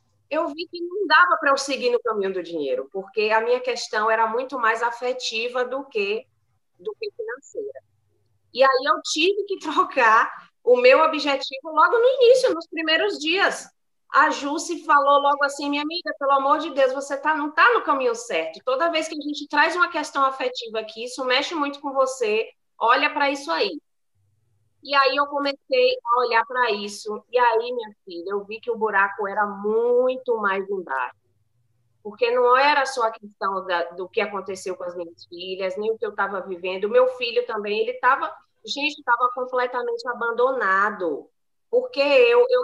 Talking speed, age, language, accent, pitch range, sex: 180 wpm, 20-39, Portuguese, Brazilian, 225-320 Hz, female